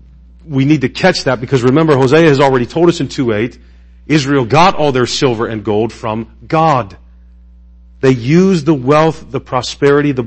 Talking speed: 175 wpm